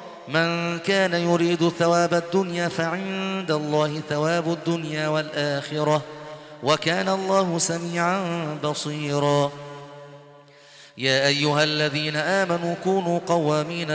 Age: 30-49